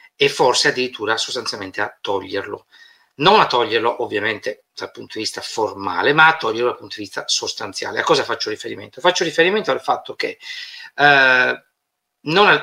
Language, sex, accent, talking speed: Italian, male, native, 155 wpm